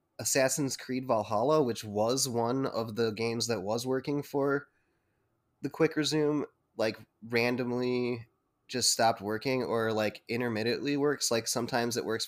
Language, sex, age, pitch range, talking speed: English, male, 20-39, 110-130 Hz, 140 wpm